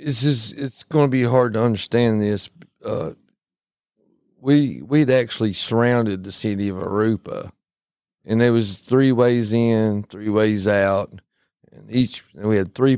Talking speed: 160 wpm